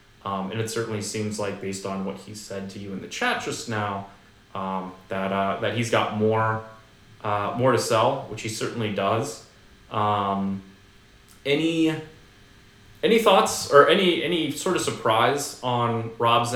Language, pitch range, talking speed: English, 100-115 Hz, 165 wpm